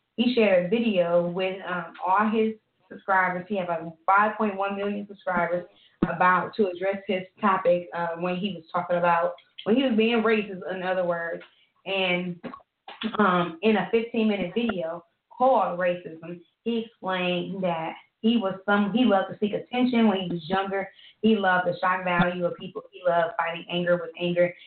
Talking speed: 175 wpm